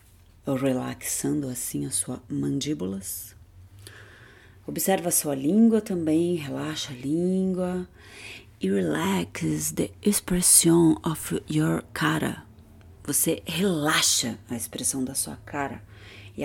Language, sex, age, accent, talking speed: Portuguese, female, 30-49, Brazilian, 100 wpm